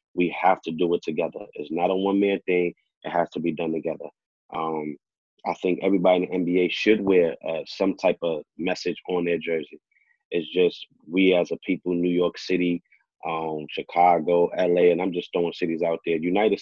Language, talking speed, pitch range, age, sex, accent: English, 195 wpm, 85-90 Hz, 30-49, male, American